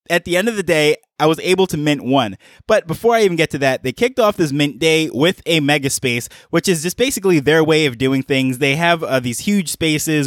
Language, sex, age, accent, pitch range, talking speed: English, male, 20-39, American, 135-170 Hz, 255 wpm